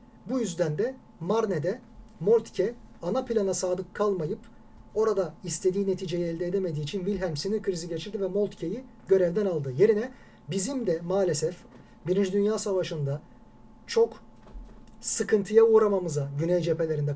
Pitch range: 155-215 Hz